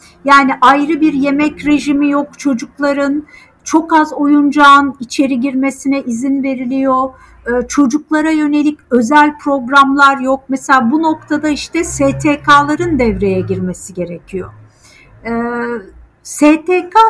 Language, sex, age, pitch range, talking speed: Turkish, female, 50-69, 240-300 Hz, 100 wpm